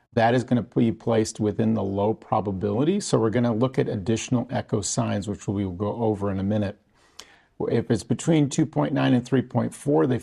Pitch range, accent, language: 105-135 Hz, American, English